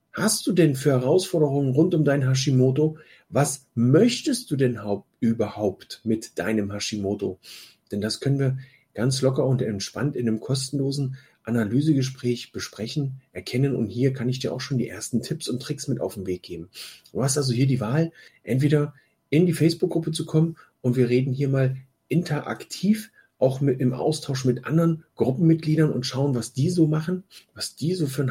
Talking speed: 175 wpm